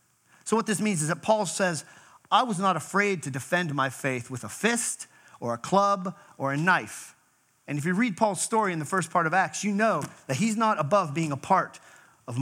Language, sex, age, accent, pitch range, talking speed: English, male, 40-59, American, 155-215 Hz, 225 wpm